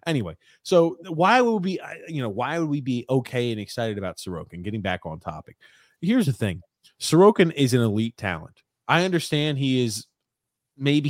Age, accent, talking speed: 30-49, American, 180 wpm